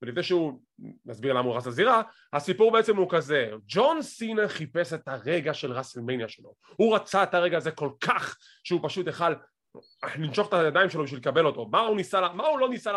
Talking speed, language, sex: 200 wpm, English, male